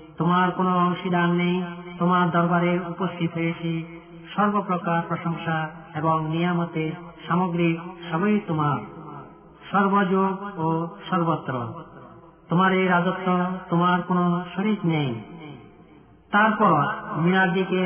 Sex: male